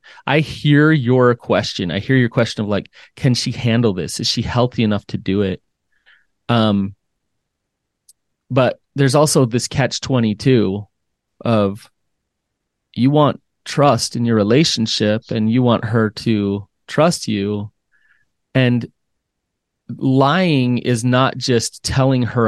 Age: 30-49